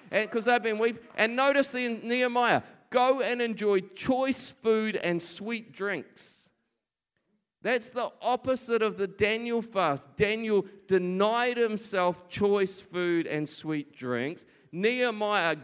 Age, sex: 50-69, male